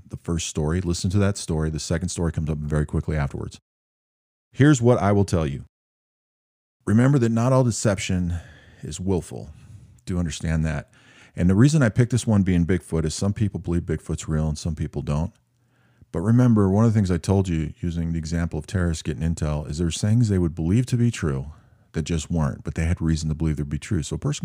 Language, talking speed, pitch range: English, 220 wpm, 80-105 Hz